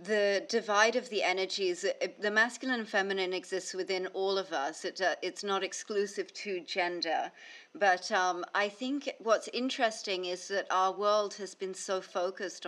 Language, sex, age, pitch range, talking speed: English, female, 40-59, 180-240 Hz, 155 wpm